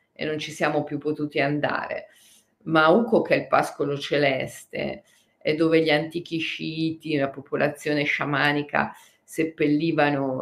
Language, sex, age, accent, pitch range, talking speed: Italian, female, 40-59, native, 140-165 Hz, 125 wpm